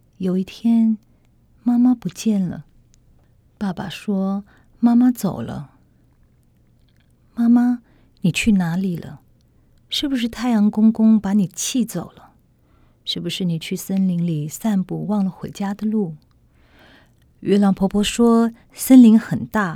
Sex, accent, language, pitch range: female, native, Chinese, 175-225 Hz